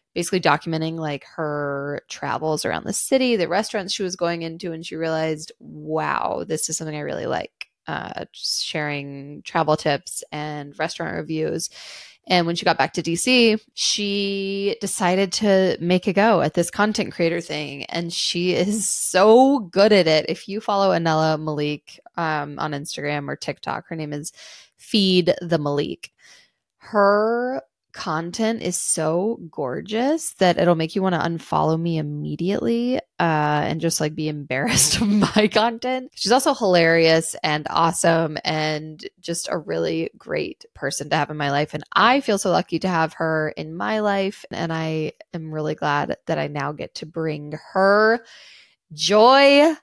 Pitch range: 155-215 Hz